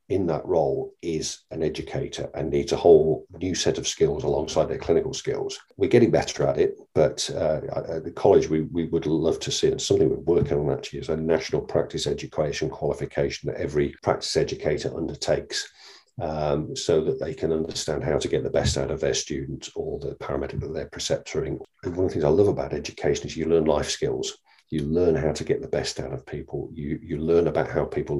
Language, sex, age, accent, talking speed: English, male, 50-69, British, 215 wpm